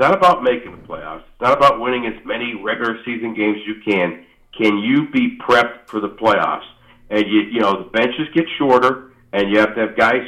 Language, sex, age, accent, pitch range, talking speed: English, male, 50-69, American, 120-155 Hz, 230 wpm